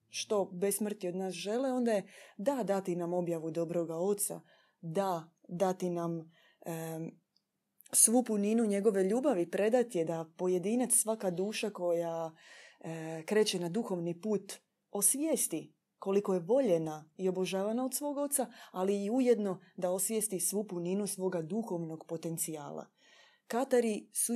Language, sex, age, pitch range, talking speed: Croatian, female, 20-39, 170-220 Hz, 135 wpm